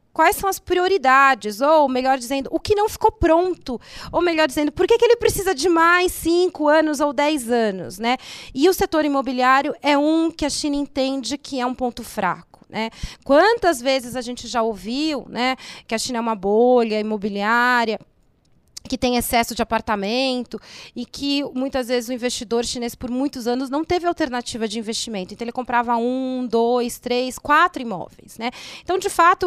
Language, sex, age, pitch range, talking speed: Portuguese, female, 30-49, 245-320 Hz, 175 wpm